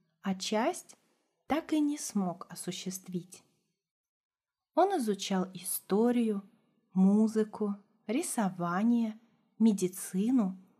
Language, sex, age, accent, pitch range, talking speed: Russian, female, 30-49, native, 185-230 Hz, 70 wpm